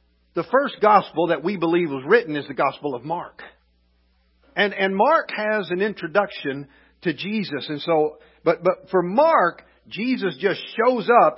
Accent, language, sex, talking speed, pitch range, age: American, English, male, 165 wpm, 125-200 Hz, 50-69